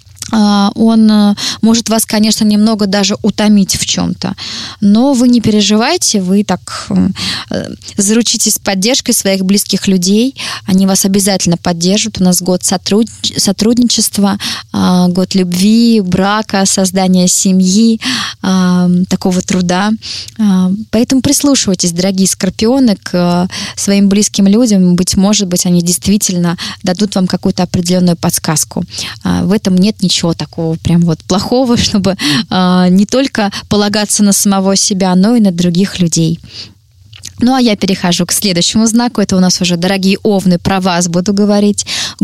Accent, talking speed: native, 130 wpm